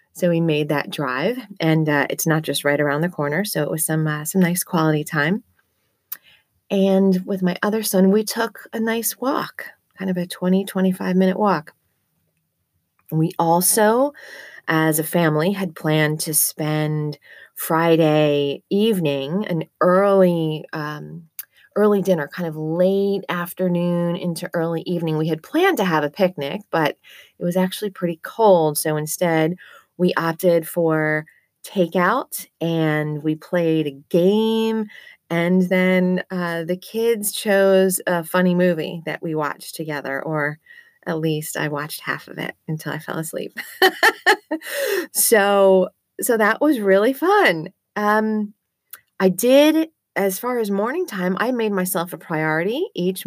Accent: American